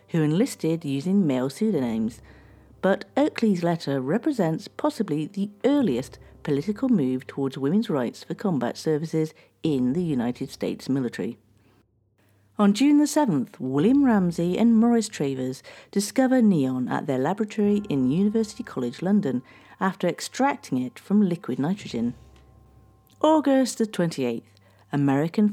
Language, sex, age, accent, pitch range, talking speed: English, female, 50-69, British, 135-220 Hz, 125 wpm